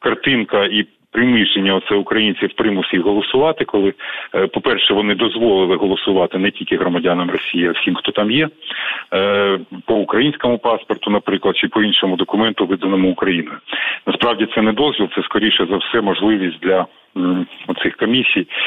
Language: Ukrainian